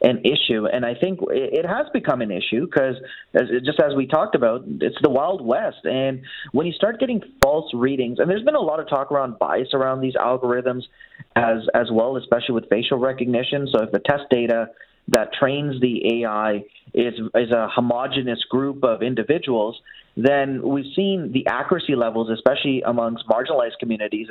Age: 30-49